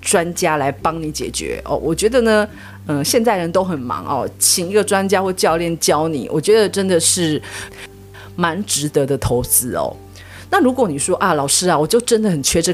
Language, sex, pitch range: Chinese, female, 145-200 Hz